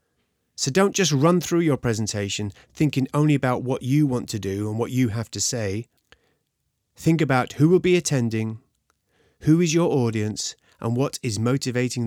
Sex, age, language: male, 30-49, English